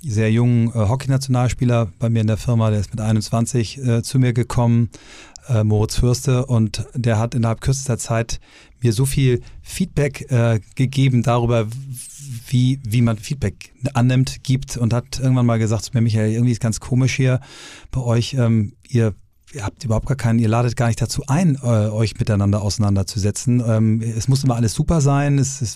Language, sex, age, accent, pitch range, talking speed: German, male, 40-59, German, 115-130 Hz, 185 wpm